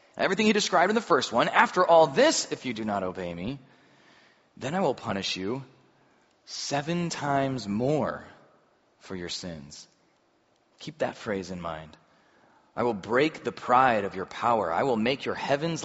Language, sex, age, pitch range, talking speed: English, male, 30-49, 100-150 Hz, 170 wpm